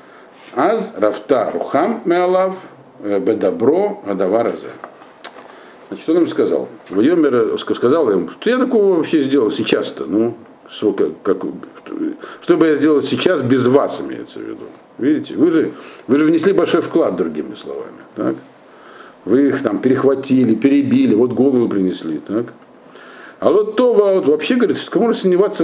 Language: Russian